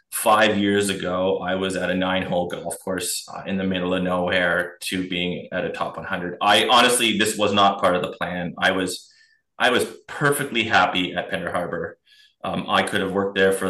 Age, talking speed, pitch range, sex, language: 20-39, 210 wpm, 95-105 Hz, male, English